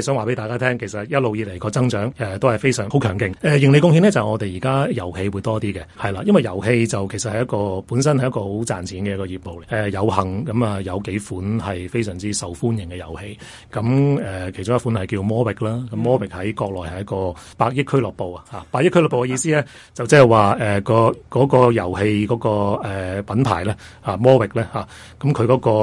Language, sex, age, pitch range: Chinese, male, 30-49, 95-125 Hz